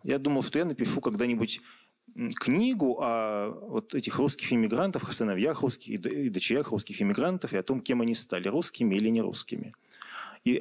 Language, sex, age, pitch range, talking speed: Russian, male, 30-49, 105-135 Hz, 155 wpm